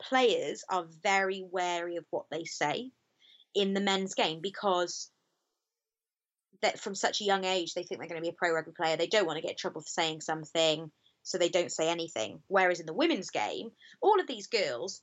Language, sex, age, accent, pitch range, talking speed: English, female, 20-39, British, 175-255 Hz, 210 wpm